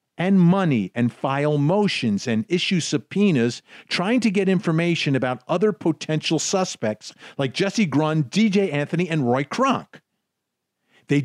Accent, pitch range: American, 135-205 Hz